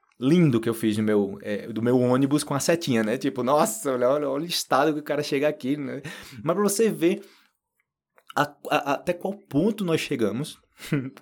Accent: Brazilian